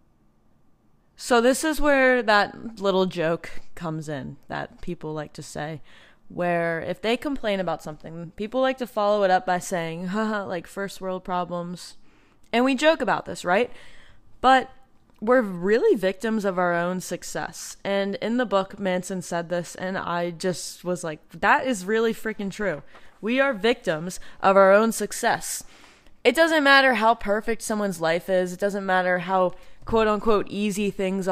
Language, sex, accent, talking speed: English, female, American, 165 wpm